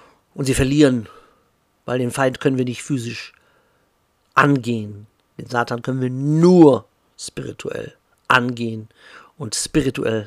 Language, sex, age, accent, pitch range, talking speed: German, male, 50-69, German, 115-135 Hz, 115 wpm